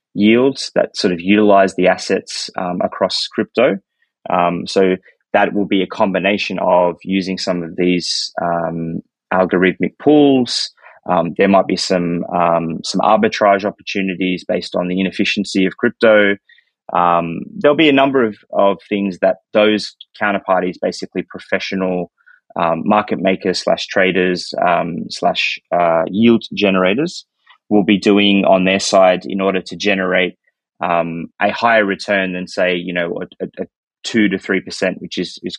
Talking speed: 150 wpm